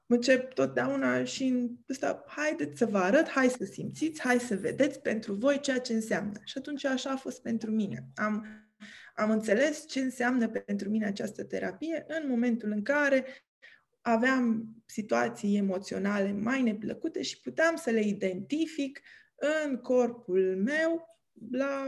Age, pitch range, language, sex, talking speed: 20-39, 190-260 Hz, Romanian, female, 145 wpm